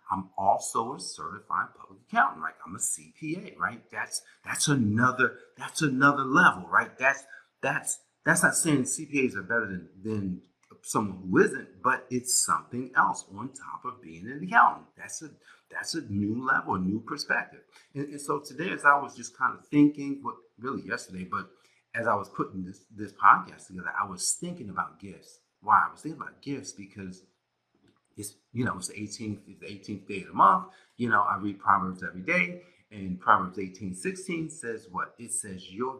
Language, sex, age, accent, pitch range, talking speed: English, male, 50-69, American, 95-145 Hz, 190 wpm